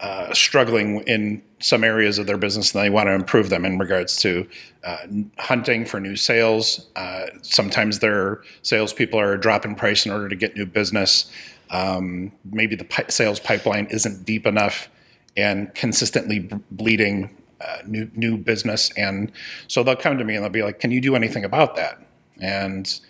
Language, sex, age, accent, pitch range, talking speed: English, male, 30-49, American, 100-115 Hz, 180 wpm